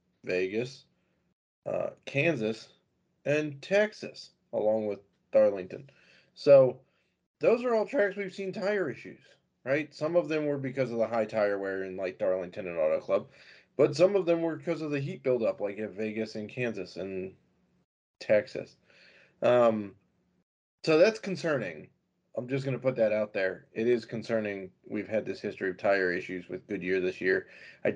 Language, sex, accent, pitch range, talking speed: English, male, American, 100-140 Hz, 165 wpm